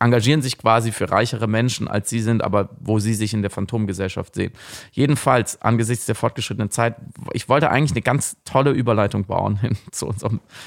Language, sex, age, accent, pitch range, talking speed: German, male, 30-49, German, 100-120 Hz, 185 wpm